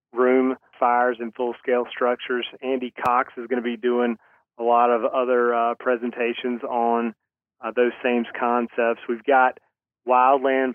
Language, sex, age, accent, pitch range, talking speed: English, male, 30-49, American, 120-125 Hz, 145 wpm